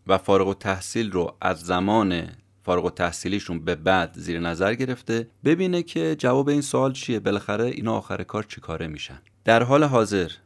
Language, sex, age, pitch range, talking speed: Persian, male, 30-49, 90-115 Hz, 170 wpm